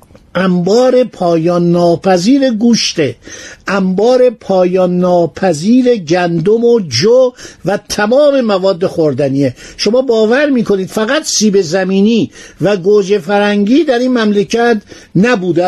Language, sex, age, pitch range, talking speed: Persian, male, 60-79, 165-215 Hz, 105 wpm